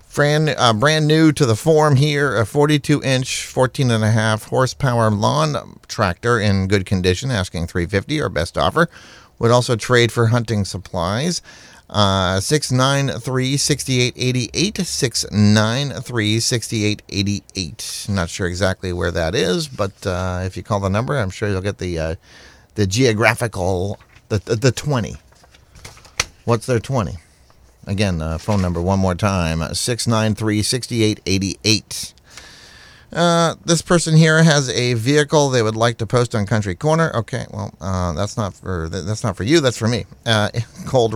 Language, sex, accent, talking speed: English, male, American, 160 wpm